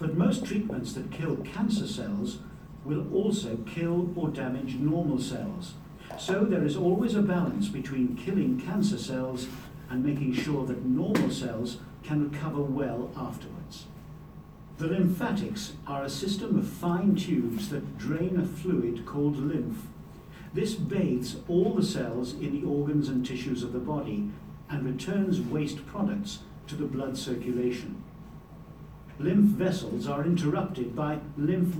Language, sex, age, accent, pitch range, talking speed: English, male, 50-69, British, 135-185 Hz, 140 wpm